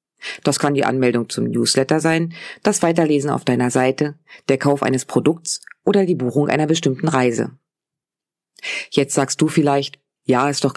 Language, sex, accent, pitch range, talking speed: German, female, German, 130-170 Hz, 160 wpm